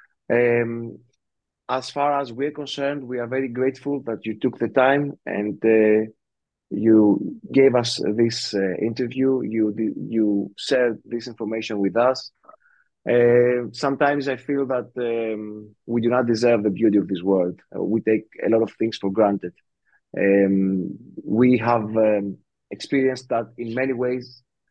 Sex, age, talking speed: male, 30-49, 155 wpm